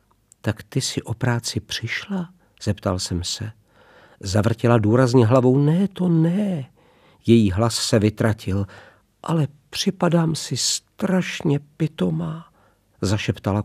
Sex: male